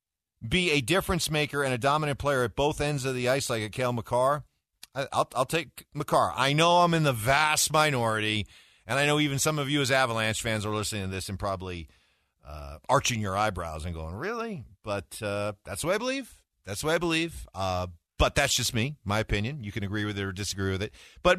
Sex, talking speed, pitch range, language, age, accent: male, 230 wpm, 100-160 Hz, English, 50-69, American